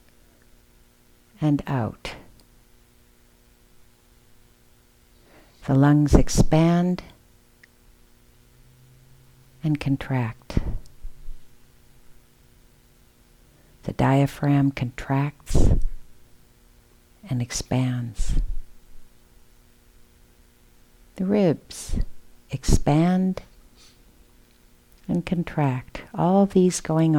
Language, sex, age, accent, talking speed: English, female, 60-79, American, 45 wpm